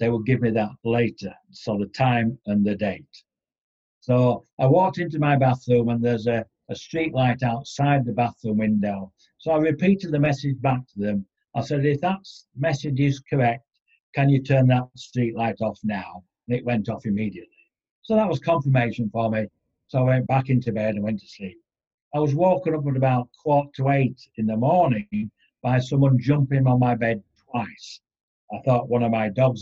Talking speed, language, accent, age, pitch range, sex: 195 wpm, English, British, 60-79, 115-140 Hz, male